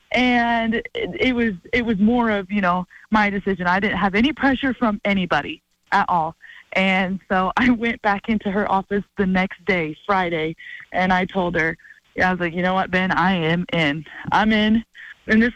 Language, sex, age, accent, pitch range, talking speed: English, female, 20-39, American, 185-230 Hz, 195 wpm